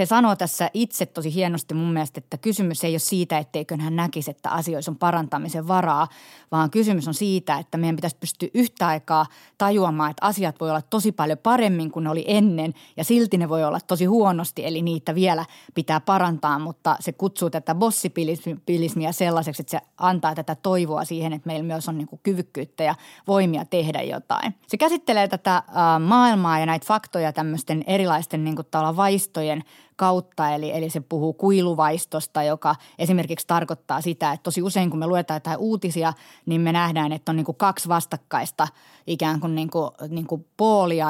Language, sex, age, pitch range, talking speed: Finnish, female, 30-49, 160-185 Hz, 175 wpm